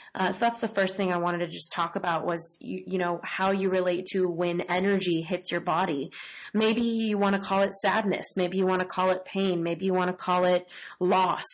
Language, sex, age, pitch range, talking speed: English, female, 20-39, 175-200 Hz, 240 wpm